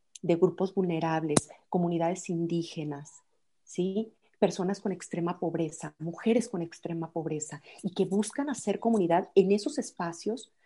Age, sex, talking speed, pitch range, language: 40-59, female, 125 wpm, 180-245 Hz, Spanish